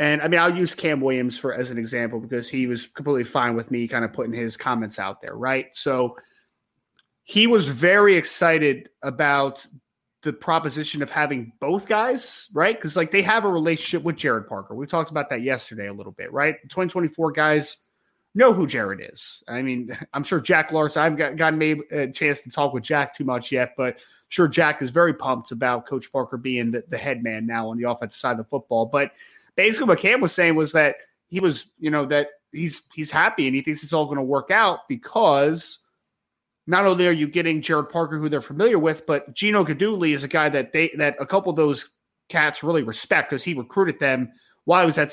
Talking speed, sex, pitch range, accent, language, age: 225 wpm, male, 130-165 Hz, American, English, 20-39